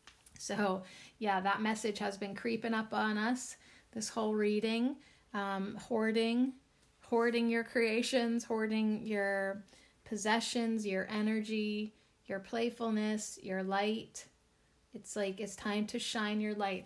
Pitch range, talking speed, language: 195-225 Hz, 125 wpm, English